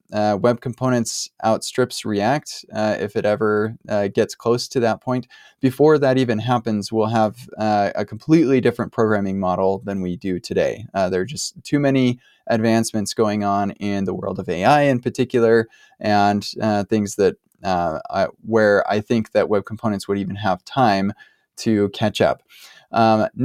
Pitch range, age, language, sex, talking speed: 105-125 Hz, 20-39, English, male, 170 wpm